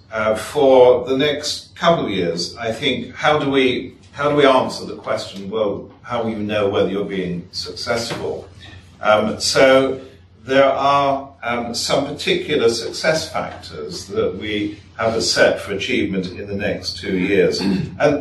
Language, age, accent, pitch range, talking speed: English, 50-69, British, 95-130 Hz, 160 wpm